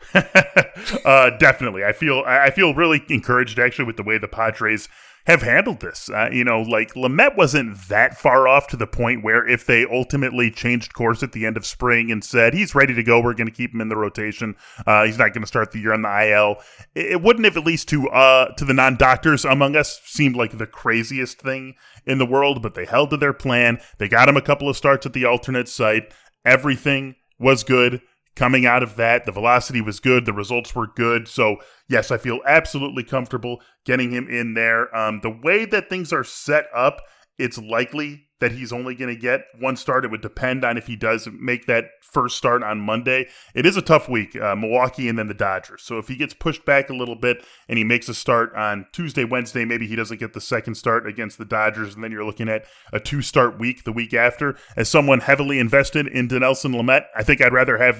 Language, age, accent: English, 20-39, American